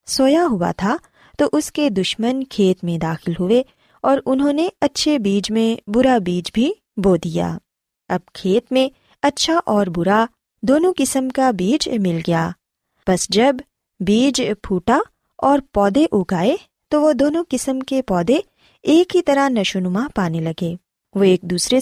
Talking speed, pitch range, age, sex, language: 155 wpm, 190-275 Hz, 20-39, female, Urdu